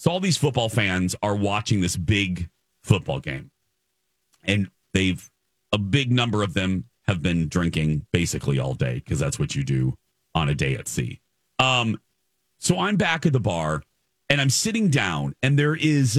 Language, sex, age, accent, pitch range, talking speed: English, male, 40-59, American, 100-160 Hz, 180 wpm